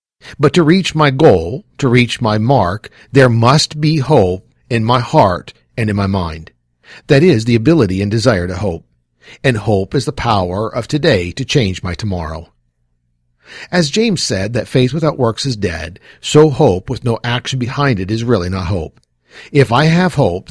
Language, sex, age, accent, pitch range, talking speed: English, male, 50-69, American, 95-135 Hz, 185 wpm